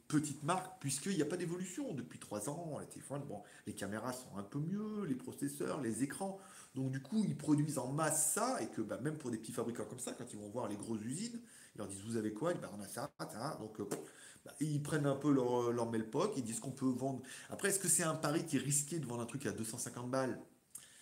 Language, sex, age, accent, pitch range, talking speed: French, male, 30-49, French, 115-160 Hz, 265 wpm